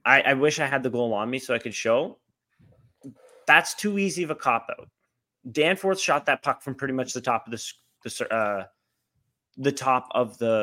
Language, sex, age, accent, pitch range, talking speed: English, male, 30-49, American, 130-165 Hz, 170 wpm